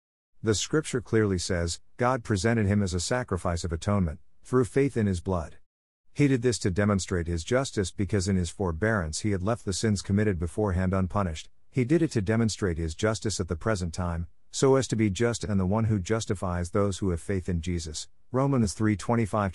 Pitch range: 85-115 Hz